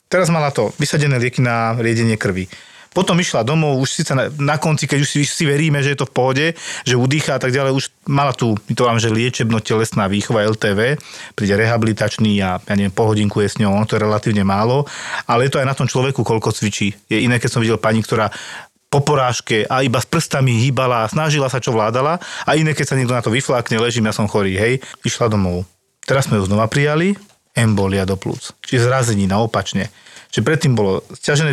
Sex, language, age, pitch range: male, Slovak, 40-59, 115-140 Hz